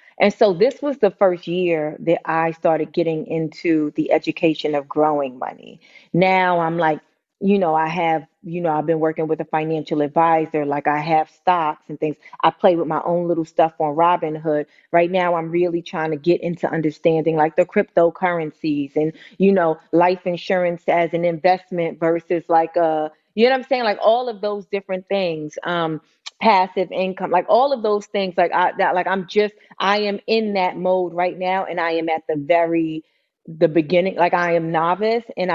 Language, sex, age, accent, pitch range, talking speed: English, female, 30-49, American, 165-225 Hz, 195 wpm